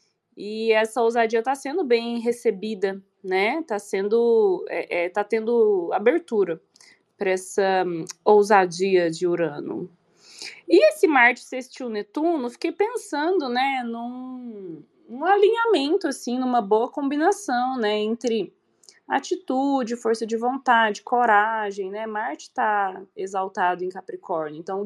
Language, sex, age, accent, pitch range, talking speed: Portuguese, female, 20-39, Brazilian, 210-320 Hz, 120 wpm